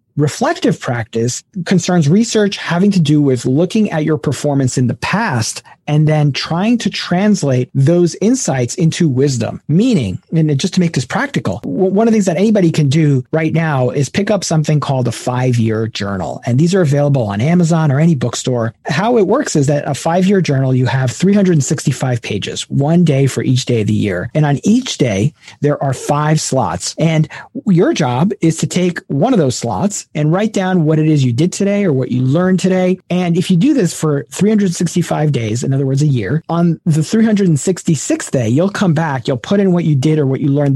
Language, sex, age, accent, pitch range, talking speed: English, male, 40-59, American, 135-185 Hz, 205 wpm